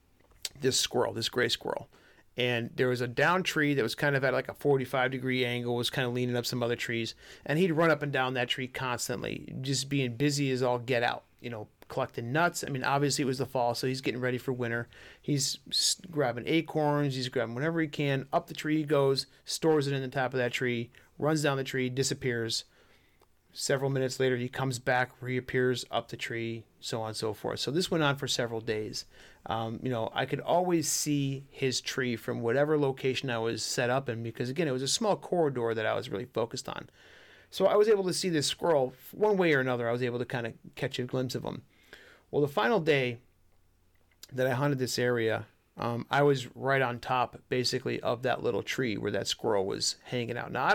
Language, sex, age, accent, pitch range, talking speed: English, male, 40-59, American, 120-140 Hz, 225 wpm